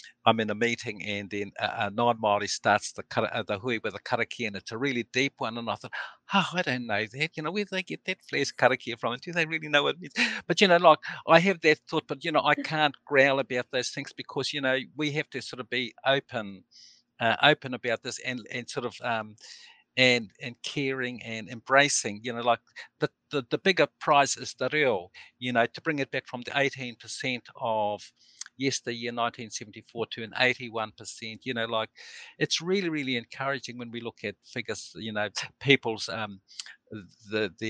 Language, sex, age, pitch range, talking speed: English, male, 50-69, 115-145 Hz, 210 wpm